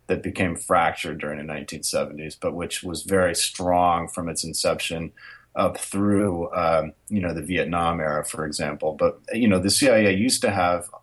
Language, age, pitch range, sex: English, 30-49, 85-100 Hz, male